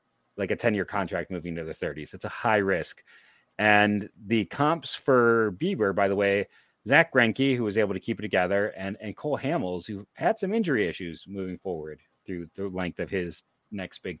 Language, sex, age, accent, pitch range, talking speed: English, male, 30-49, American, 90-110 Hz, 200 wpm